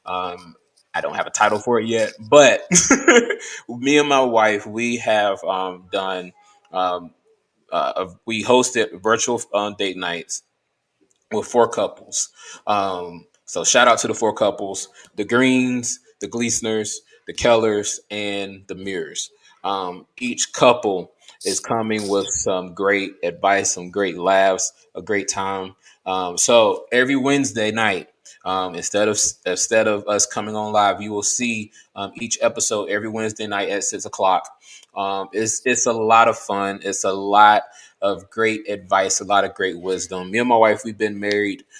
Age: 20-39